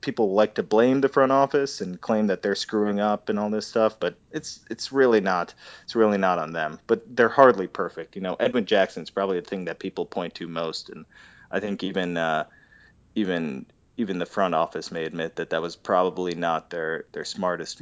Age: 30-49